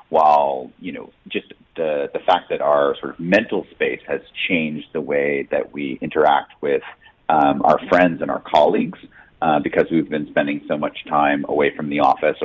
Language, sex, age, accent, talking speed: English, male, 40-59, American, 190 wpm